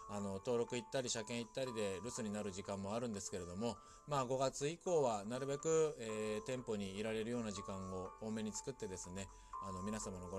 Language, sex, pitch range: Japanese, male, 105-150 Hz